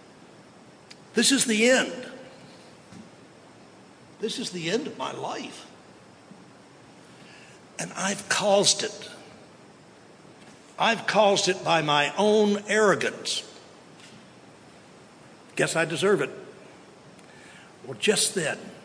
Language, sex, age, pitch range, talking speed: English, male, 60-79, 160-200 Hz, 90 wpm